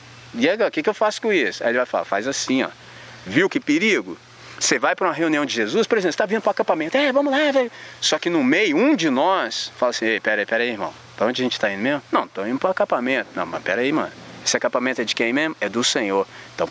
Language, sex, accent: Portuguese, male, Brazilian